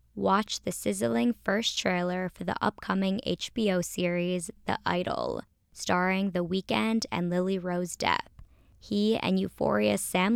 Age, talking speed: 10-29, 135 wpm